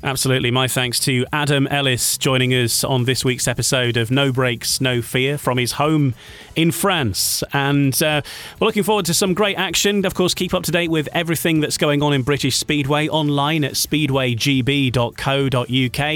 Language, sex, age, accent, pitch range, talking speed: English, male, 30-49, British, 120-155 Hz, 180 wpm